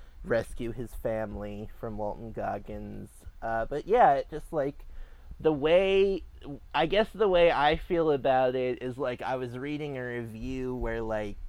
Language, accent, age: English, American, 20-39